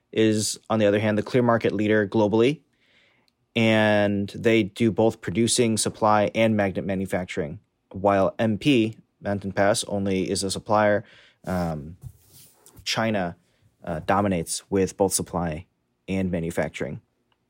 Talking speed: 125 wpm